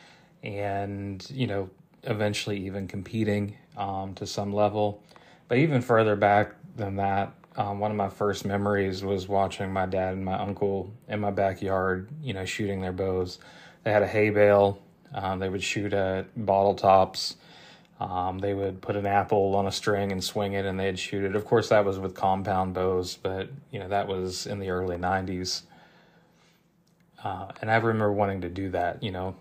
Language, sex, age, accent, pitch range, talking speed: English, male, 20-39, American, 95-110 Hz, 185 wpm